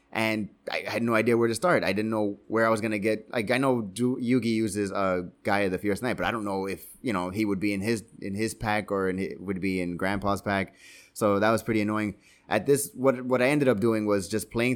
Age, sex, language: 20-39, male, English